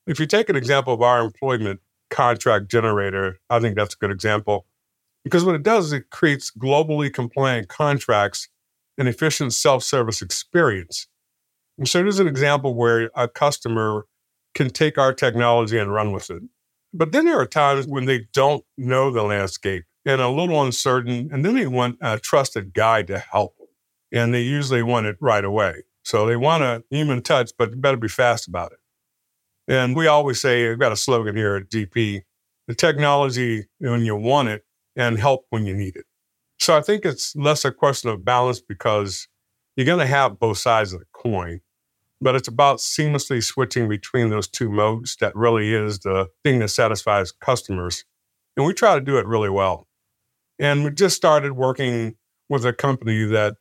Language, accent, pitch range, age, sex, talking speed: English, American, 105-140 Hz, 50-69, male, 185 wpm